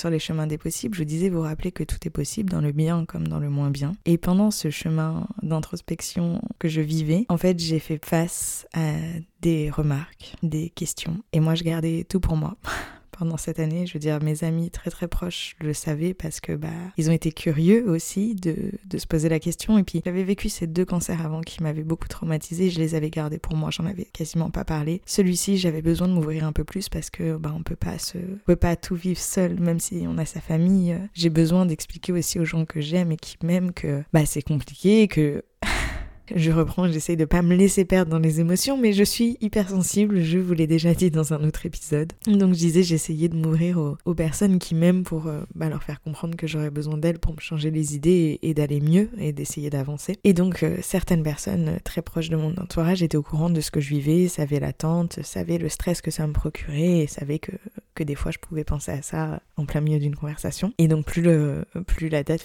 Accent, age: French, 20-39